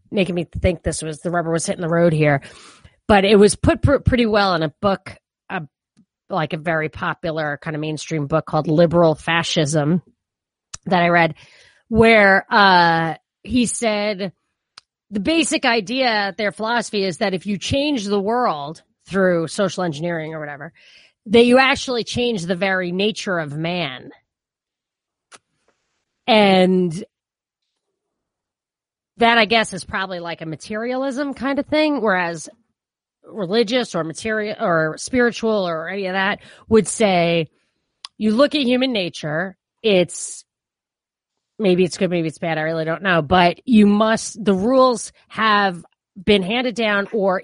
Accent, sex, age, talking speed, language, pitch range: American, female, 30-49, 150 wpm, English, 165-220 Hz